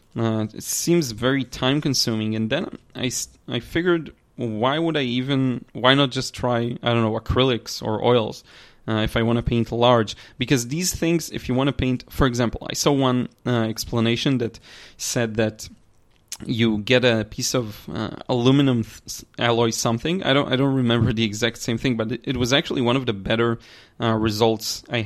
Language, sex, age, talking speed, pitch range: English, male, 20-39, 190 wpm, 115-130 Hz